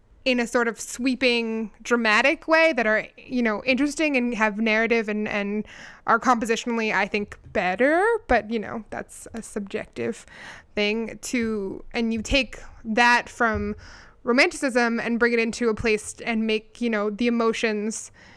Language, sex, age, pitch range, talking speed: English, female, 20-39, 215-245 Hz, 155 wpm